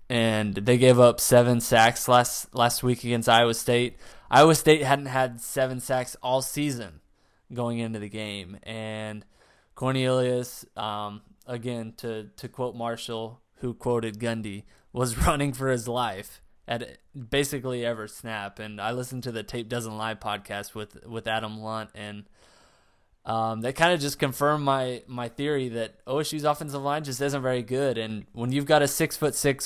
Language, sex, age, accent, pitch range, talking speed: English, male, 20-39, American, 110-130 Hz, 170 wpm